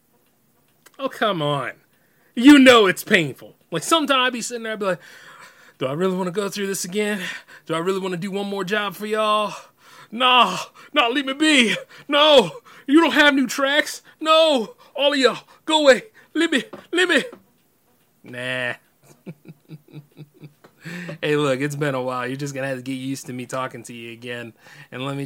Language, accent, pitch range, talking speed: English, American, 130-210 Hz, 195 wpm